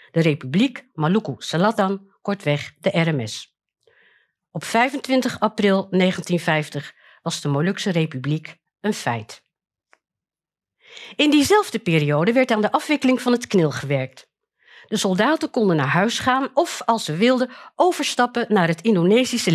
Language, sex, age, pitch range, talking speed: Dutch, female, 50-69, 165-245 Hz, 130 wpm